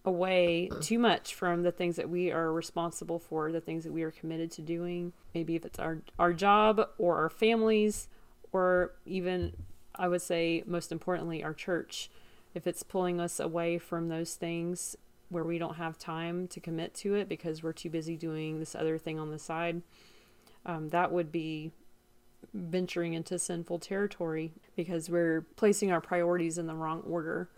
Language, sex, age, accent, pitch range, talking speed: English, female, 30-49, American, 165-180 Hz, 180 wpm